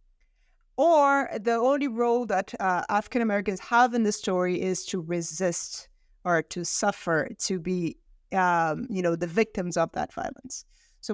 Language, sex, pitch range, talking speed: English, female, 185-235 Hz, 155 wpm